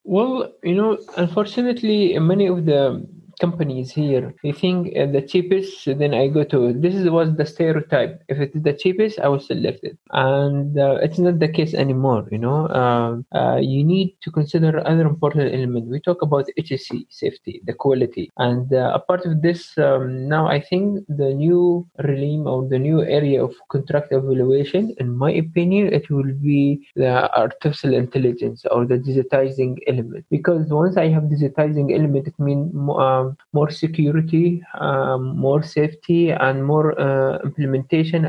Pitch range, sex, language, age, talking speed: 135-165 Hz, male, English, 20-39, 170 wpm